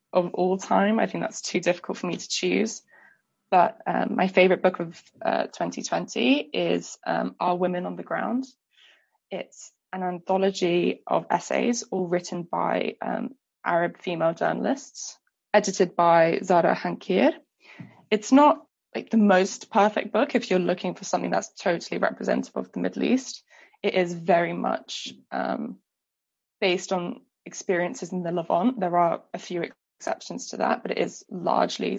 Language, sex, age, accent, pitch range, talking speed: English, female, 20-39, British, 175-225 Hz, 160 wpm